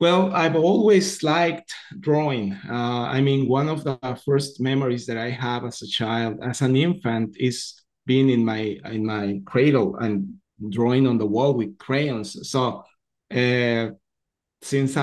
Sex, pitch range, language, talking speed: male, 115-135 Hz, English, 155 wpm